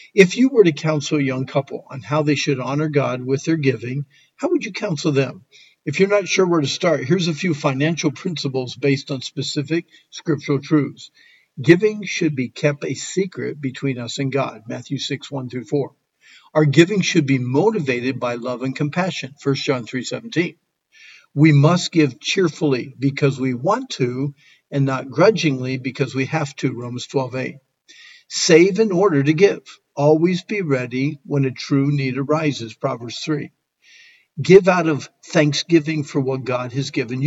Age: 50-69